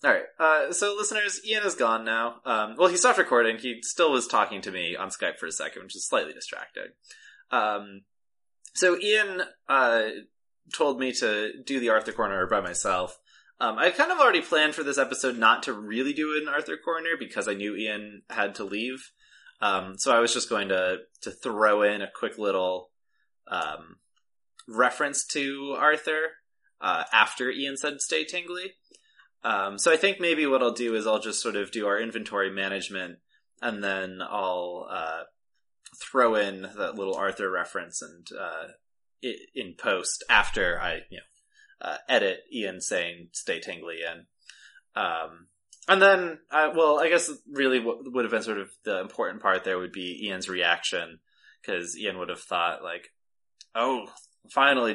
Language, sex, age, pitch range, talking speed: English, male, 20-39, 105-160 Hz, 175 wpm